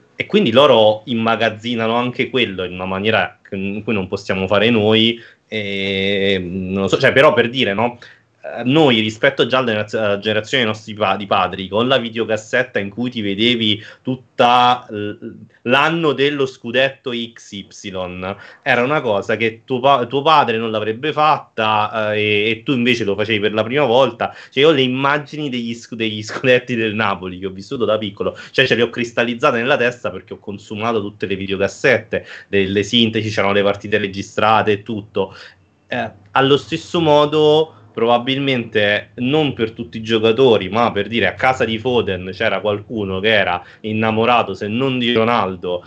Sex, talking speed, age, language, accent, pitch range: male, 165 wpm, 30-49, Italian, native, 105-125 Hz